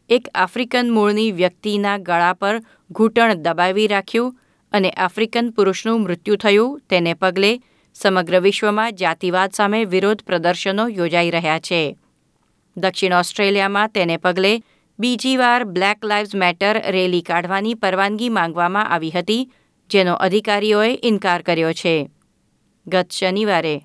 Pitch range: 180-215 Hz